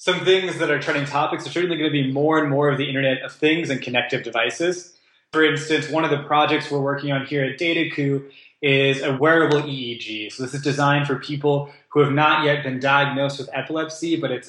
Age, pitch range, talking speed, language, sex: 20-39, 130-155 Hz, 225 wpm, English, male